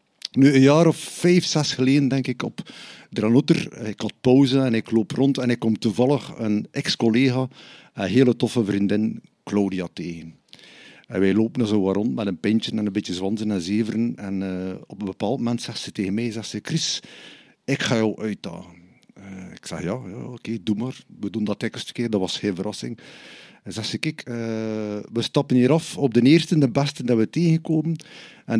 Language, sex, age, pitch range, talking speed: Dutch, male, 50-69, 110-145 Hz, 210 wpm